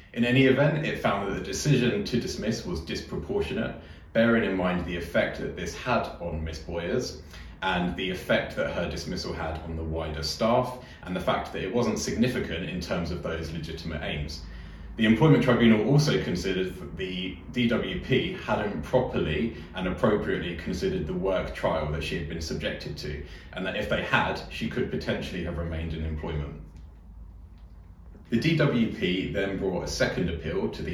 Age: 30-49